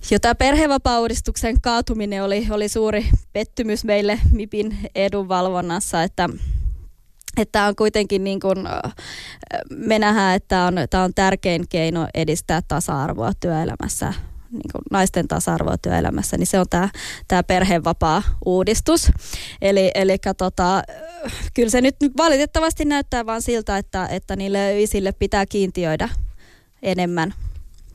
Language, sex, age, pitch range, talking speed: Finnish, female, 20-39, 175-210 Hz, 115 wpm